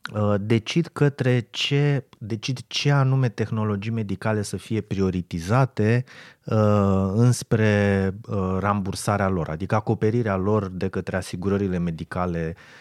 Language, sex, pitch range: Romanian, male, 95-125 Hz